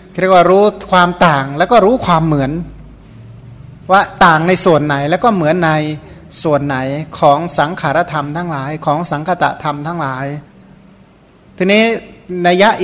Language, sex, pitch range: Thai, male, 150-185 Hz